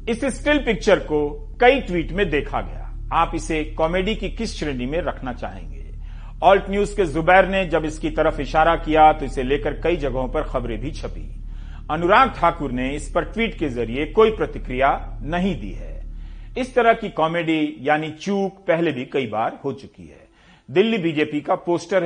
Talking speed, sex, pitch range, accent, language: 180 wpm, male, 140-190 Hz, native, Hindi